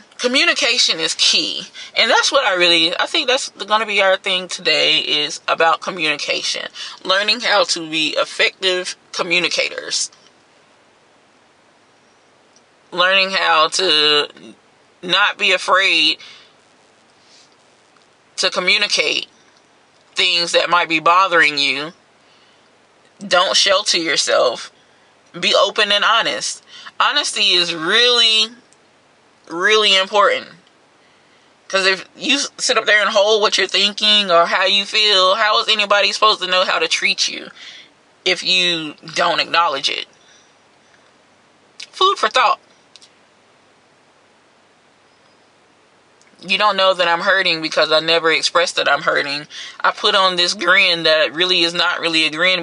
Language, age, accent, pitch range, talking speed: English, 20-39, American, 170-215 Hz, 125 wpm